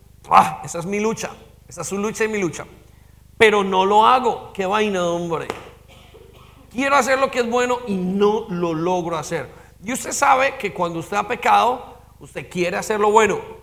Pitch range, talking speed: 185-260 Hz, 190 wpm